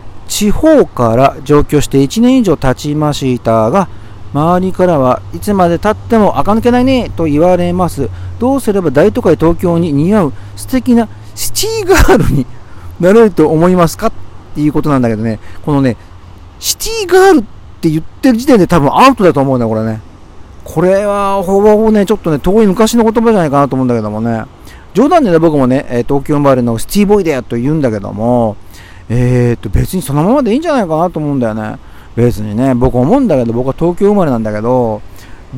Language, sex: Japanese, male